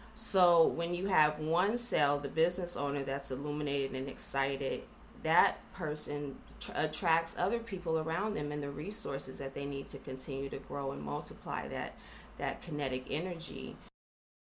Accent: American